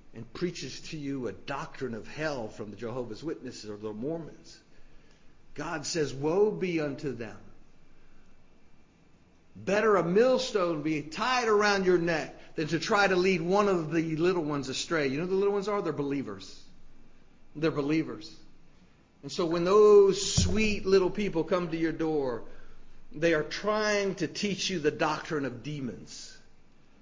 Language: English